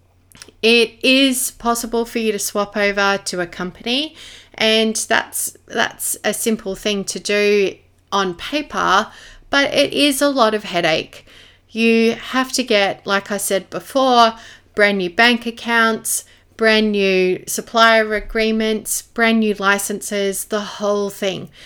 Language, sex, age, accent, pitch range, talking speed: English, female, 30-49, Australian, 185-225 Hz, 140 wpm